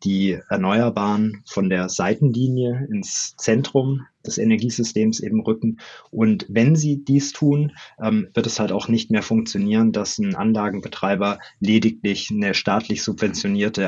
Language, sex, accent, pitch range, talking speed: German, male, German, 105-130 Hz, 130 wpm